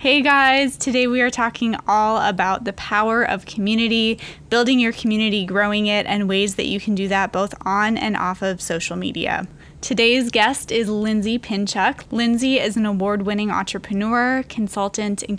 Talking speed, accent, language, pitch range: 170 wpm, American, English, 190-225 Hz